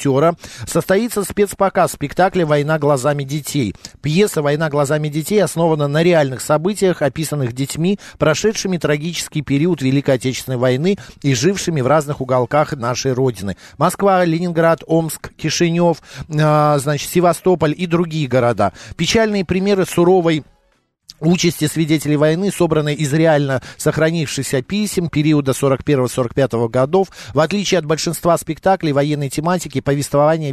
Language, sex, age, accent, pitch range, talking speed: Russian, male, 50-69, native, 135-170 Hz, 120 wpm